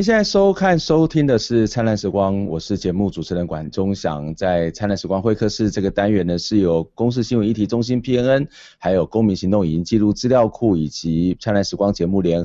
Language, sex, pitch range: Chinese, male, 85-115 Hz